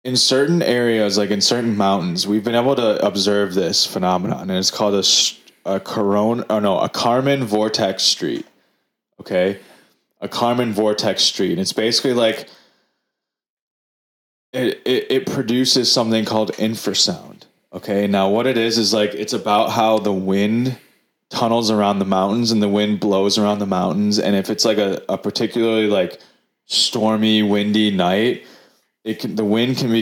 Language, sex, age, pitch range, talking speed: English, male, 20-39, 100-115 Hz, 165 wpm